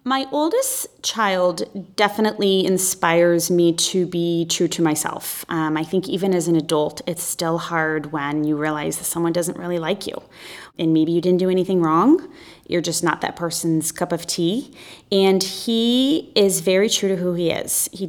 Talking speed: 180 wpm